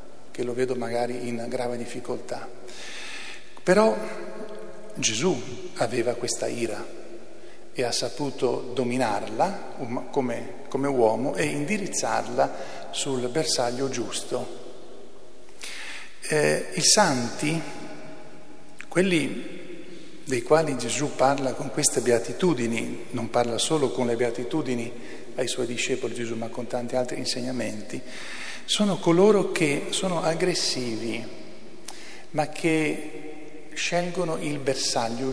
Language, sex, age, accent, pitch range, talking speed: Italian, male, 50-69, native, 125-160 Hz, 100 wpm